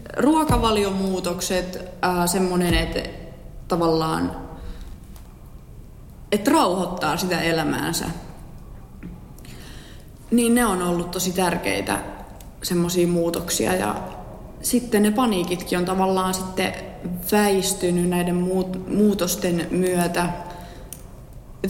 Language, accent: Finnish, native